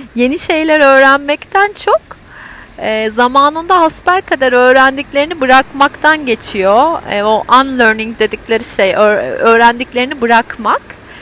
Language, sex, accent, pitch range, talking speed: Turkish, female, native, 240-320 Hz, 85 wpm